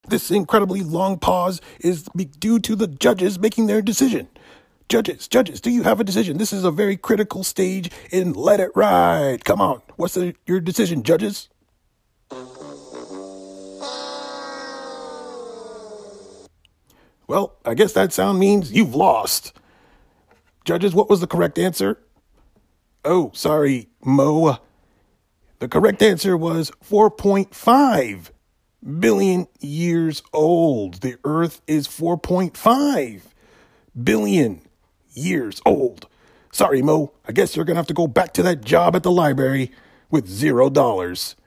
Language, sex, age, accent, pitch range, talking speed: English, male, 40-59, American, 145-210 Hz, 125 wpm